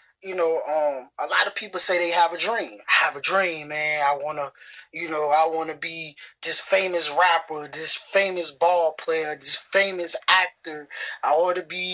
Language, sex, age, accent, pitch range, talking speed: English, male, 20-39, American, 170-275 Hz, 185 wpm